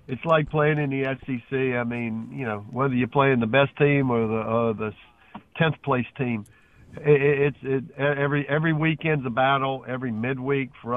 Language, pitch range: English, 120-145 Hz